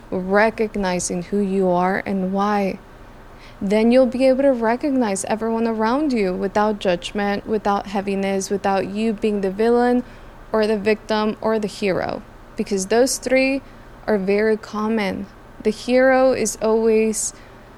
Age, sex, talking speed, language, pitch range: 20-39, female, 135 wpm, English, 195-225 Hz